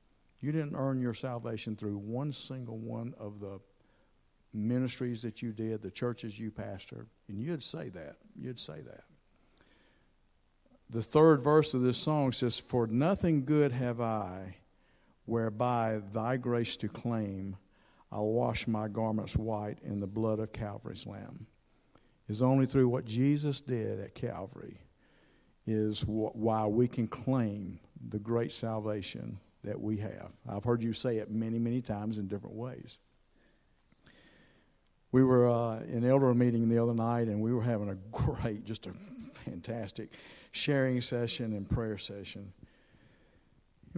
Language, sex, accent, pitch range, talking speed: English, male, American, 105-125 Hz, 150 wpm